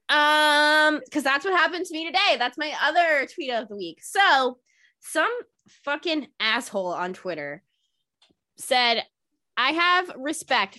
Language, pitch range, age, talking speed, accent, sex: English, 215-300 Hz, 20-39, 140 wpm, American, female